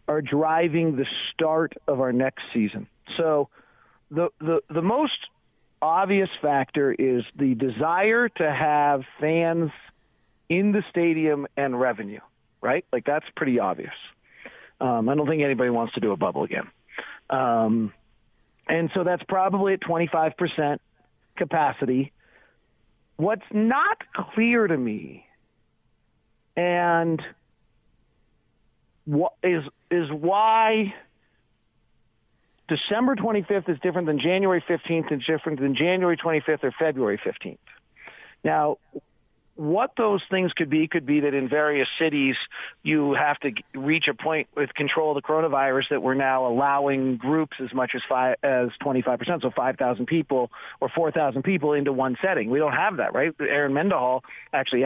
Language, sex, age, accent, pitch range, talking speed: English, male, 40-59, American, 130-170 Hz, 140 wpm